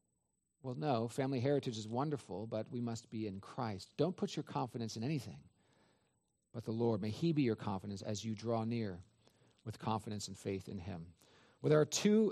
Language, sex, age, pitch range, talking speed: English, male, 40-59, 115-145 Hz, 195 wpm